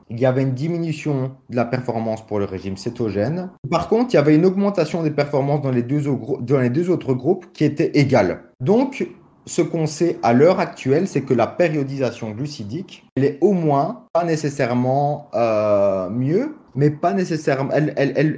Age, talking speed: 30-49, 195 wpm